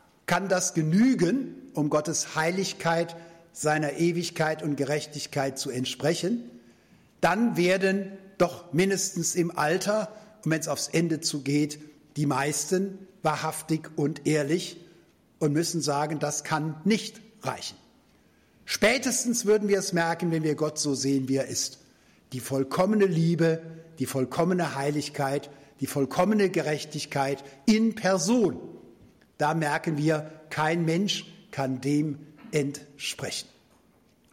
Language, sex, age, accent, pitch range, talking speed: German, male, 60-79, German, 140-180 Hz, 120 wpm